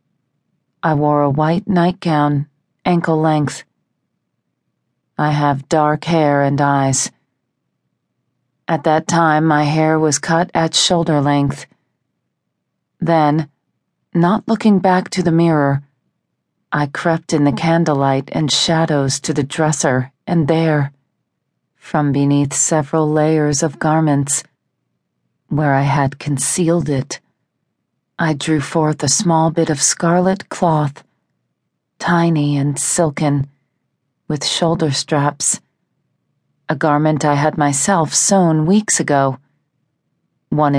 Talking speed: 115 wpm